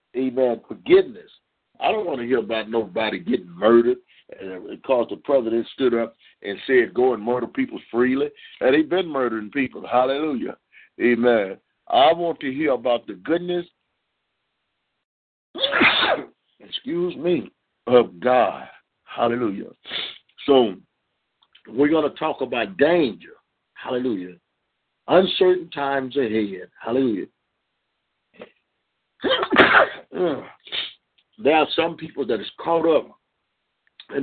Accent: American